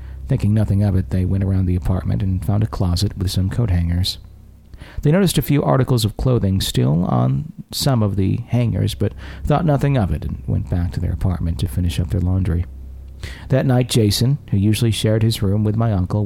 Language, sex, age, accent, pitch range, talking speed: English, male, 50-69, American, 90-110 Hz, 210 wpm